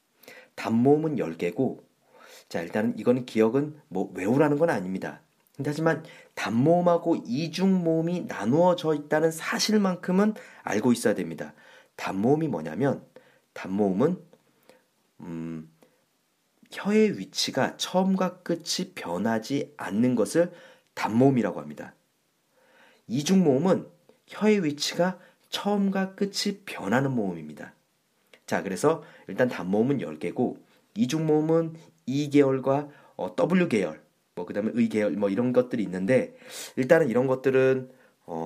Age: 40-59